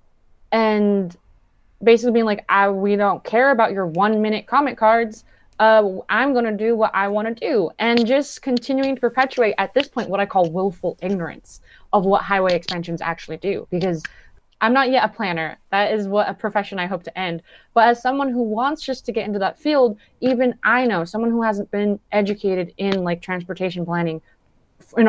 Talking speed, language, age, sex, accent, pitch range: 190 wpm, English, 20-39, female, American, 185-235 Hz